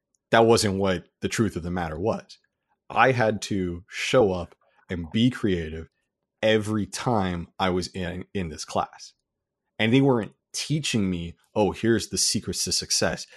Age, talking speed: 30-49, 160 wpm